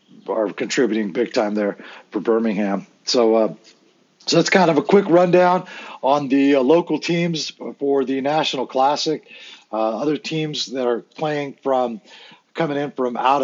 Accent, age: American, 40-59